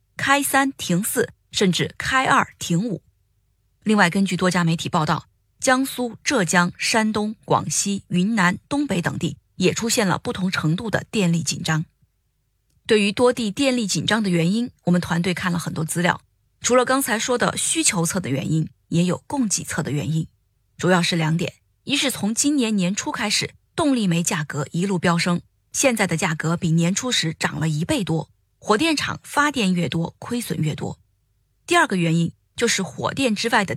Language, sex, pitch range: Chinese, female, 160-215 Hz